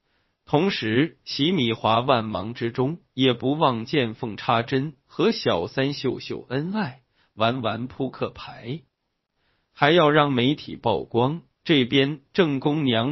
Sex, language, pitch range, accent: male, Chinese, 115-140 Hz, native